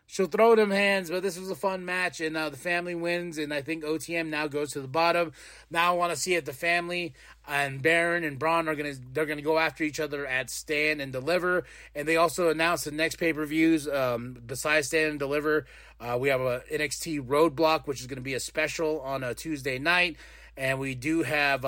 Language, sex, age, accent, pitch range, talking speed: English, male, 30-49, American, 140-175 Hz, 225 wpm